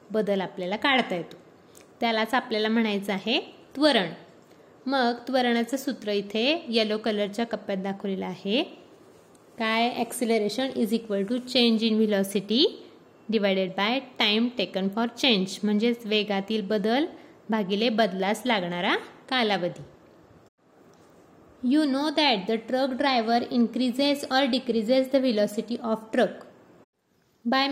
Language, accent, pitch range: Marathi, native, 210-260 Hz